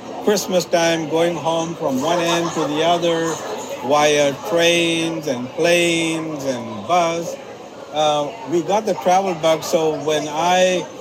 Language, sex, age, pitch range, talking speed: English, male, 60-79, 140-175 Hz, 135 wpm